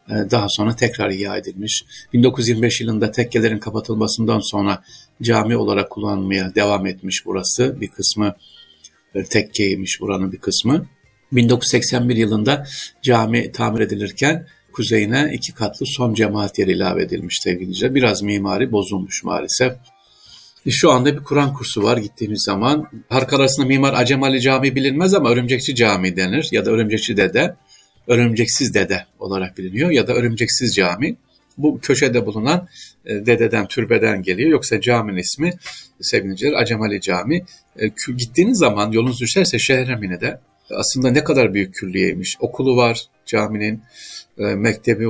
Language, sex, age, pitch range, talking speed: Turkish, male, 60-79, 105-130 Hz, 130 wpm